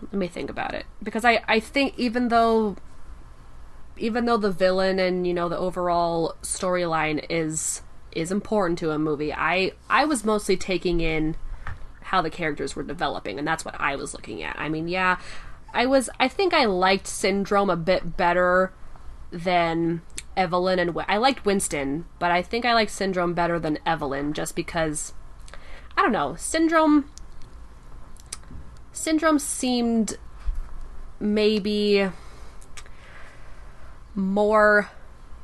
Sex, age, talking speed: female, 20-39, 140 wpm